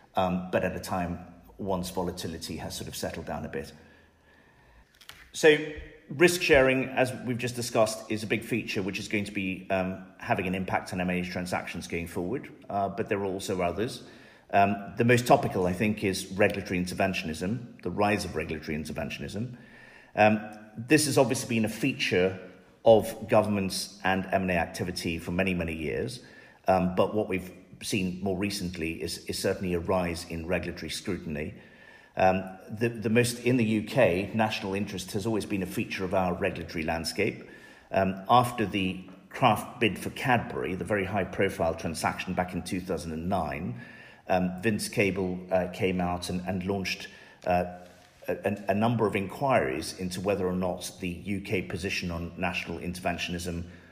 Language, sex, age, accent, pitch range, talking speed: English, male, 40-59, British, 90-105 Hz, 165 wpm